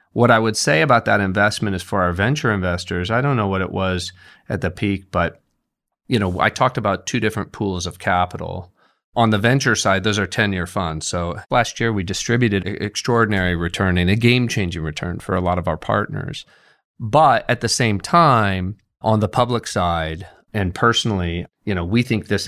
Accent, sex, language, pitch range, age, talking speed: American, male, English, 90-115 Hz, 30-49, 195 wpm